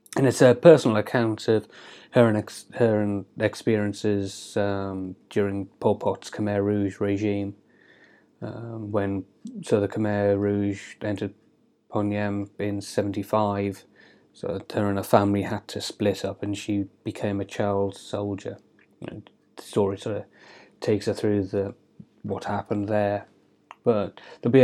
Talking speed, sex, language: 145 wpm, male, English